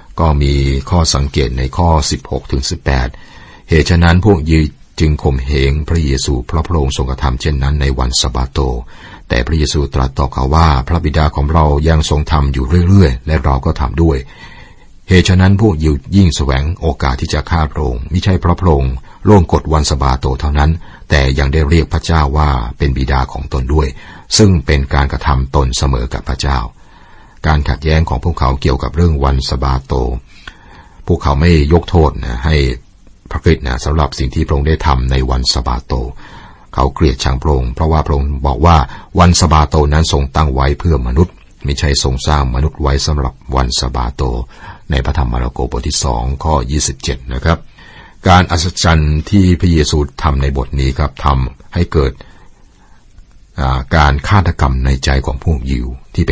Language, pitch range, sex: Thai, 65-80 Hz, male